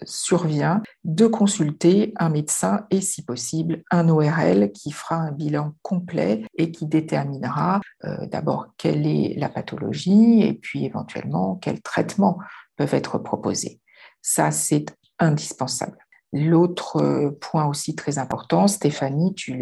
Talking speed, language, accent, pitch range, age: 130 wpm, French, French, 145-175 Hz, 50-69